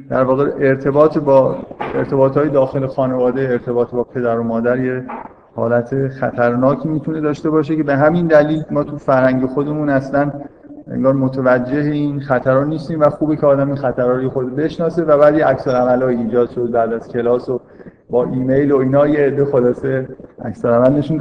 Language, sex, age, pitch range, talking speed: Persian, male, 50-69, 130-155 Hz, 165 wpm